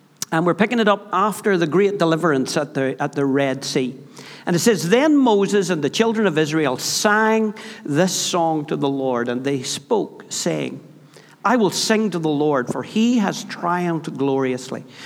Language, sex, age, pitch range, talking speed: English, male, 60-79, 155-205 Hz, 185 wpm